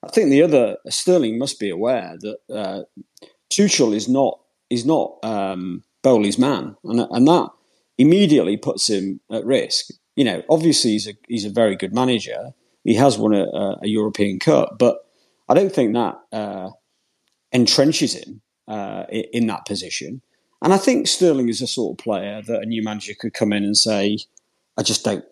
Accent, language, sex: British, English, male